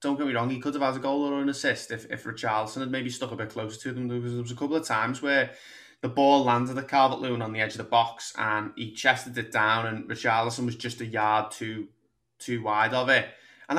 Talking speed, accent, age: 260 wpm, British, 20-39